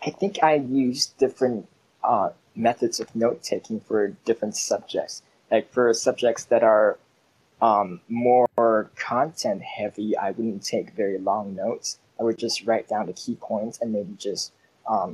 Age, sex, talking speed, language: 20-39, male, 150 wpm, English